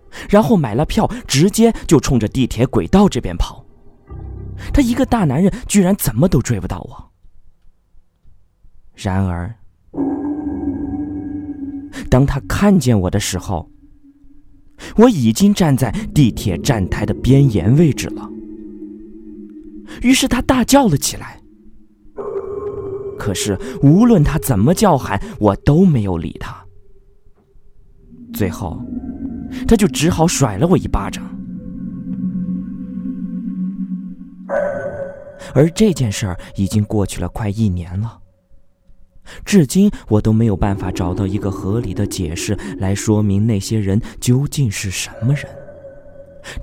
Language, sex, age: Chinese, male, 20-39